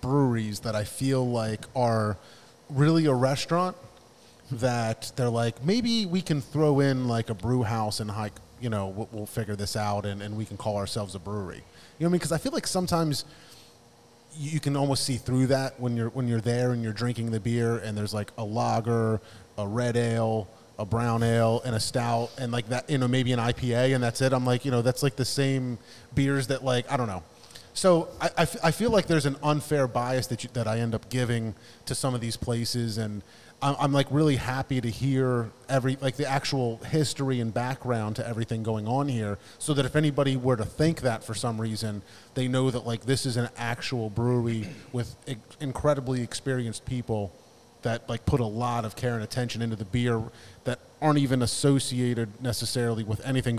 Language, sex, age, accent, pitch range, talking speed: English, male, 30-49, American, 115-135 Hz, 205 wpm